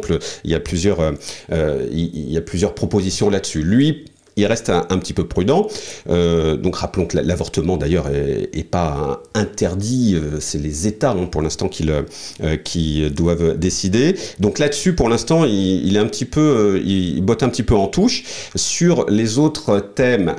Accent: French